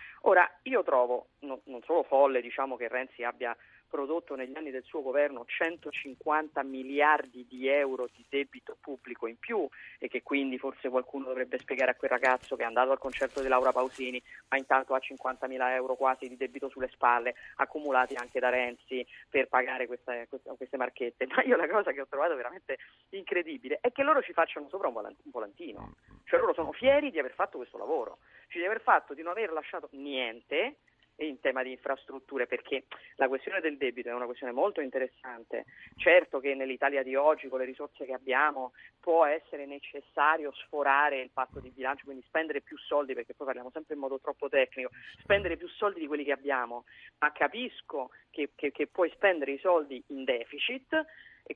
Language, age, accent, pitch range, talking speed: Italian, 30-49, native, 130-160 Hz, 190 wpm